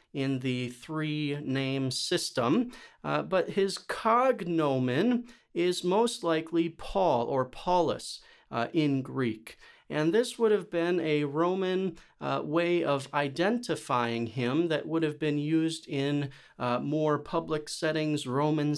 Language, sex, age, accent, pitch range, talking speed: English, male, 40-59, American, 150-190 Hz, 130 wpm